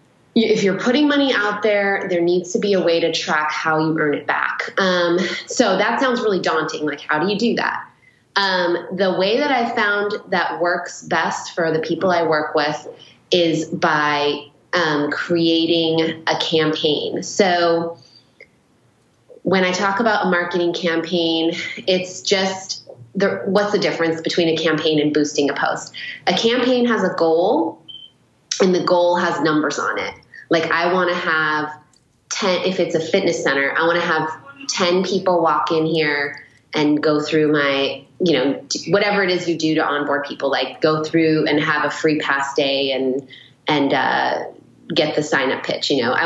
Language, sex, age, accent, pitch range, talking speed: English, female, 20-39, American, 155-185 Hz, 180 wpm